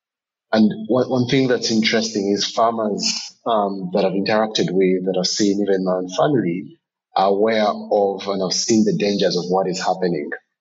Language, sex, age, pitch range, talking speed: English, male, 30-49, 90-110 Hz, 180 wpm